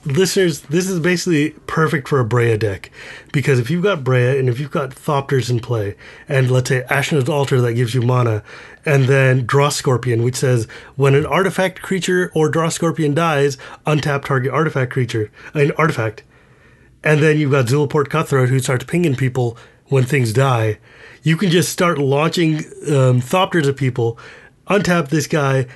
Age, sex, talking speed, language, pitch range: 30-49, male, 175 wpm, English, 130-170 Hz